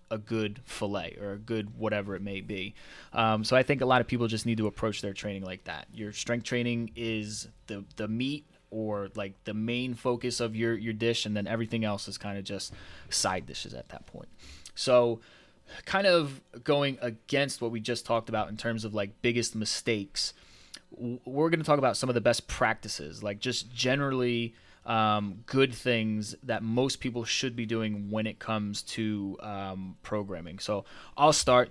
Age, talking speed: 20-39, 190 wpm